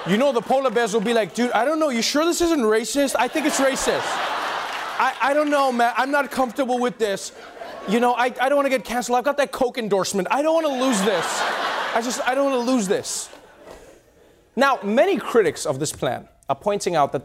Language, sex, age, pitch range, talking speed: English, male, 30-49, 180-275 Hz, 240 wpm